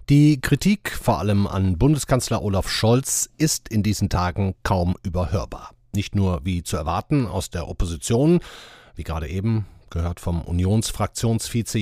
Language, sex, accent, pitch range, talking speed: German, male, German, 95-135 Hz, 140 wpm